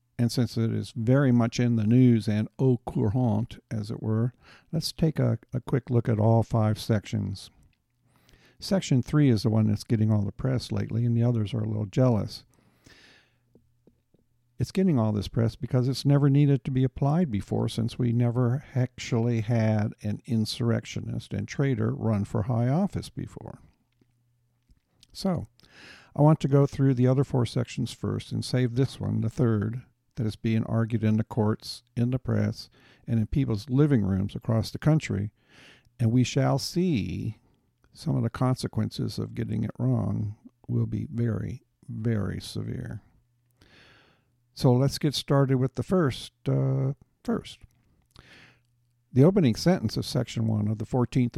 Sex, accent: male, American